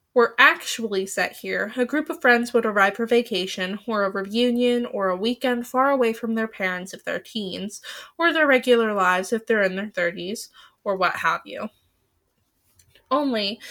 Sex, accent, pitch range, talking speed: female, American, 205-275 Hz, 175 wpm